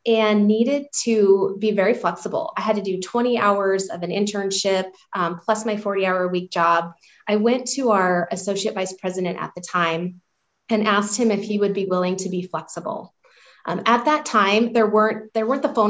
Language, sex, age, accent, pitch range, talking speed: English, female, 20-39, American, 180-220 Hz, 195 wpm